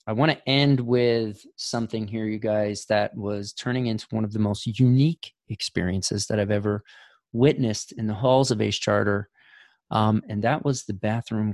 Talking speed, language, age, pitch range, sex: 180 wpm, English, 30-49, 105-125 Hz, male